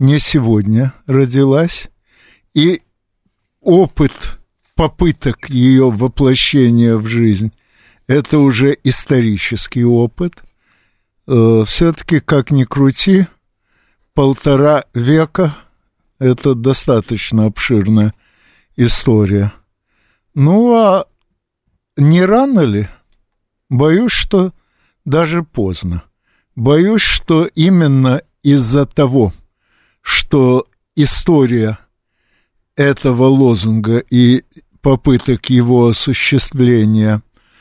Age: 60-79